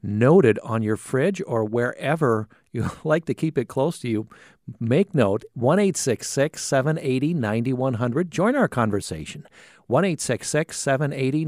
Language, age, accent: English, 50-69, American